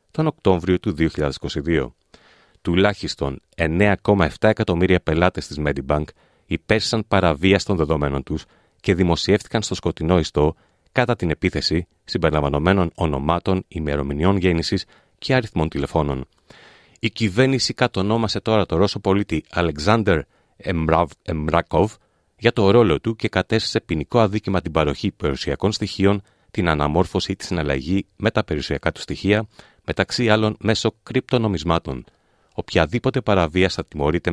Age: 40-59